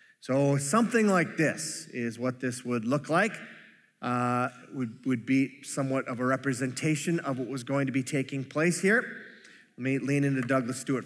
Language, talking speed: English, 180 wpm